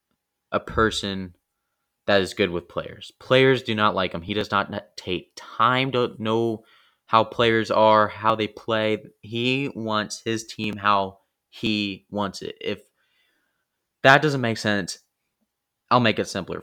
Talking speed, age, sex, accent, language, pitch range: 150 wpm, 20-39, male, American, English, 105-125 Hz